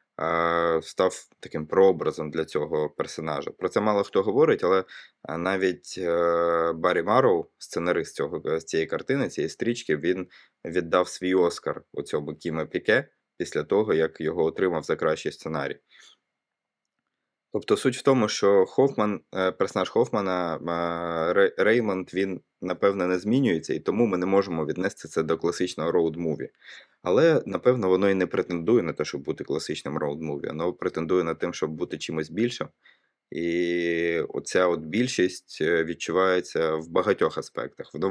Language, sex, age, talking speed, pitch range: Ukrainian, male, 20-39, 140 wpm, 85-95 Hz